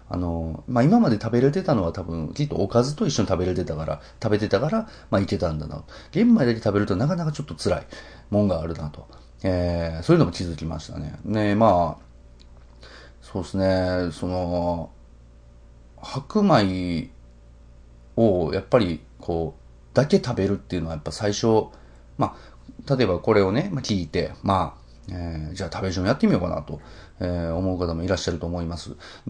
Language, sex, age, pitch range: Japanese, male, 30-49, 80-110 Hz